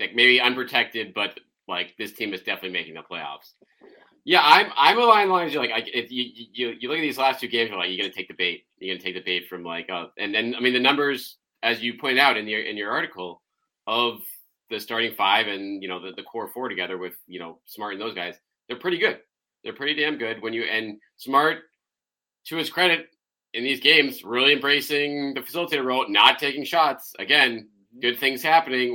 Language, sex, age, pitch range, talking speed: English, male, 30-49, 100-130 Hz, 220 wpm